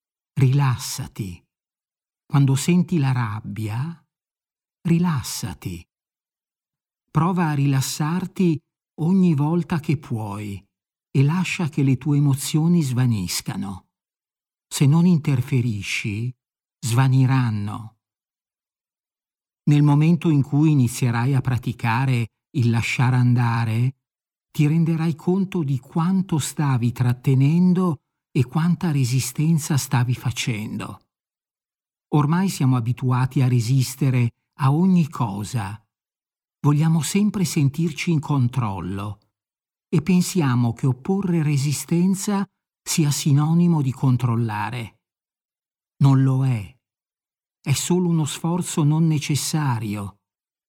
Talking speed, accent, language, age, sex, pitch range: 90 wpm, native, Italian, 50-69, male, 120-165 Hz